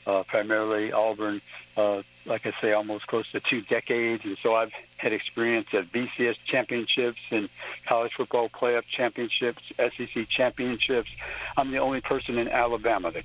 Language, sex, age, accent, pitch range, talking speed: English, male, 60-79, American, 115-125 Hz, 155 wpm